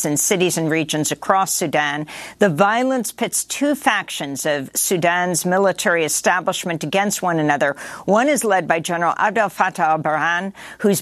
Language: English